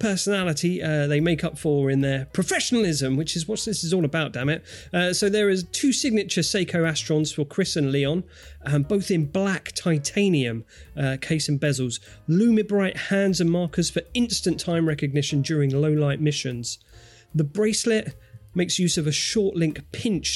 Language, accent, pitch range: English, British, 140-180 Hz